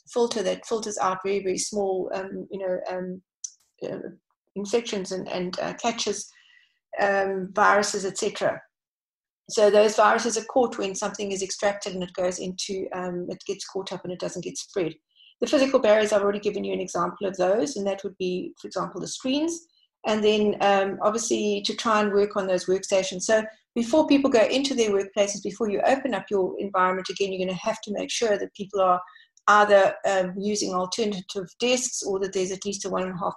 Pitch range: 190-230 Hz